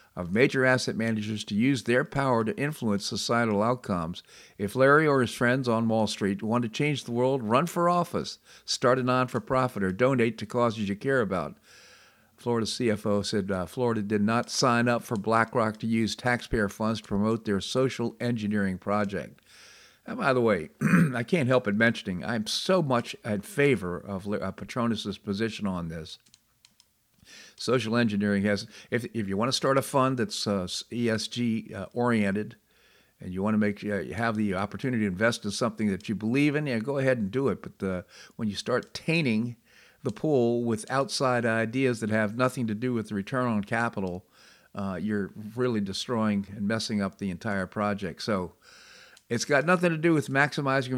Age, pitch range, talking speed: 50-69, 105-125 Hz, 185 wpm